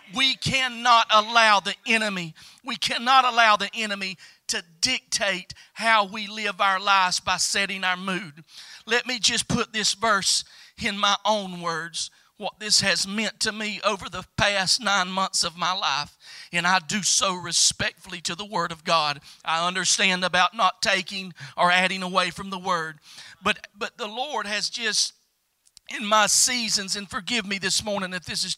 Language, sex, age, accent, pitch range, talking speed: English, male, 40-59, American, 180-220 Hz, 175 wpm